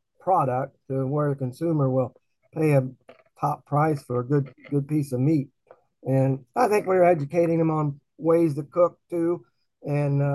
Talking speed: 175 wpm